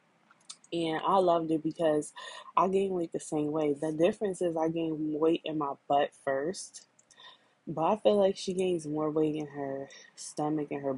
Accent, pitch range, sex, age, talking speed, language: American, 155-200 Hz, female, 20-39, 185 wpm, English